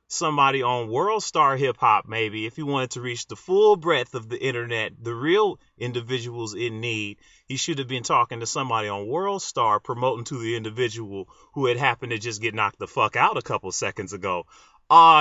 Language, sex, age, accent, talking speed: English, male, 30-49, American, 200 wpm